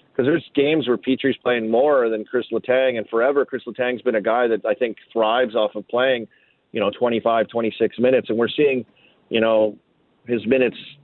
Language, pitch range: English, 105-135 Hz